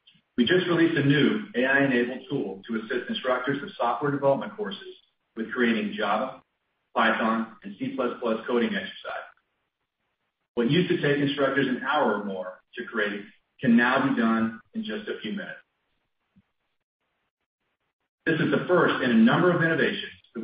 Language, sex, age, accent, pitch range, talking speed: English, male, 40-59, American, 115-150 Hz, 155 wpm